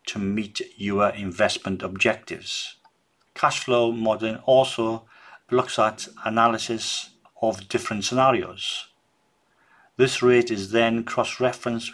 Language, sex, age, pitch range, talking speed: English, male, 40-59, 100-115 Hz, 100 wpm